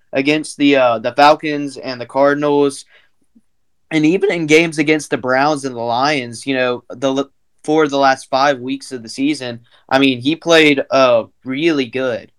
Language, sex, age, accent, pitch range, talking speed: English, male, 20-39, American, 120-140 Hz, 175 wpm